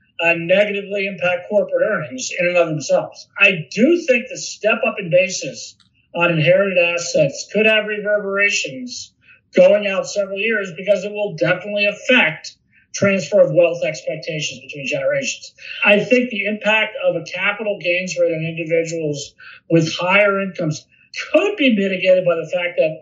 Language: English